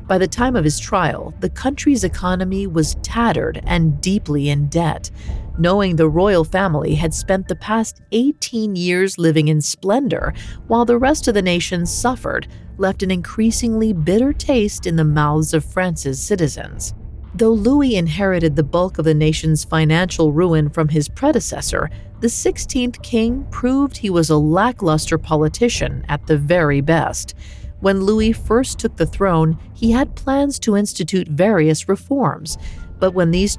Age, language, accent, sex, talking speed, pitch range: 40-59, English, American, female, 155 wpm, 155-220 Hz